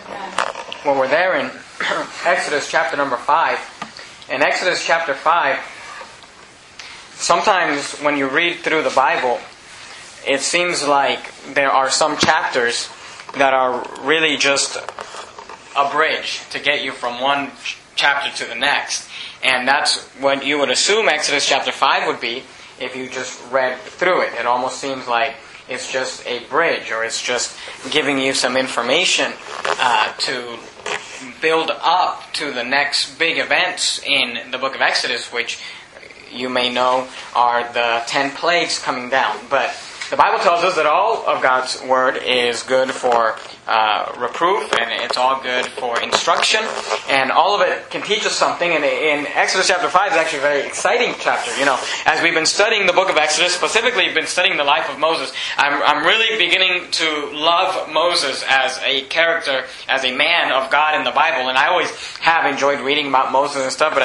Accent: American